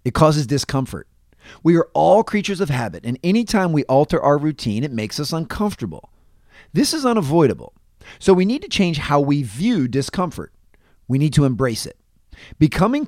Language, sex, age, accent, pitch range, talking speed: English, male, 40-59, American, 120-175 Hz, 170 wpm